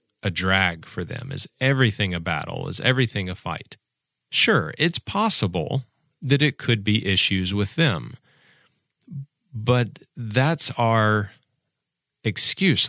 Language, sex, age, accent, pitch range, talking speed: English, male, 40-59, American, 90-130 Hz, 120 wpm